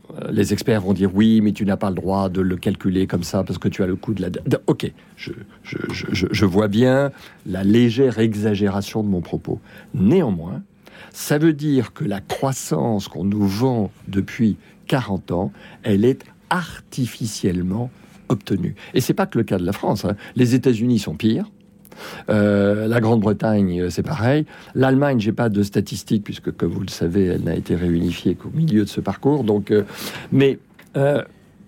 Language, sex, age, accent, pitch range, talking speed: French, male, 50-69, French, 100-130 Hz, 190 wpm